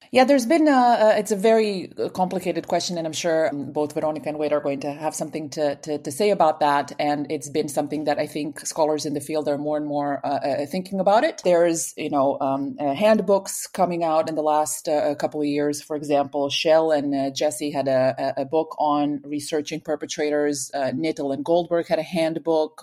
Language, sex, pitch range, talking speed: English, female, 145-175 Hz, 220 wpm